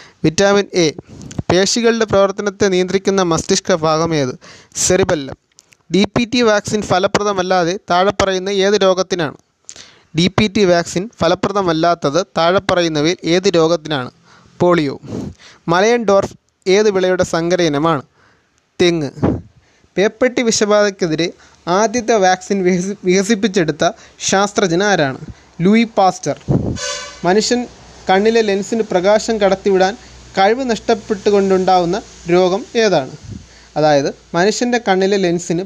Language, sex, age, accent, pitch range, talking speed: Malayalam, male, 30-49, native, 170-205 Hz, 90 wpm